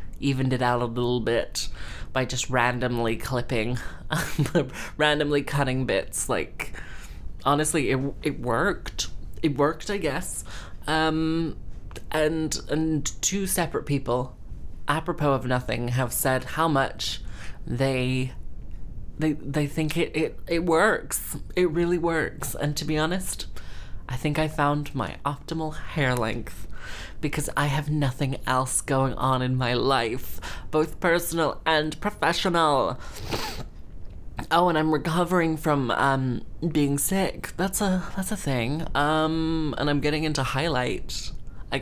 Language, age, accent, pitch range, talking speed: English, 20-39, British, 125-155 Hz, 130 wpm